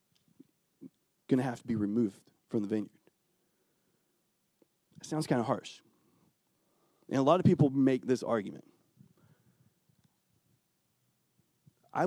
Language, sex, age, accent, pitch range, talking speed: English, male, 40-59, American, 125-175 Hz, 115 wpm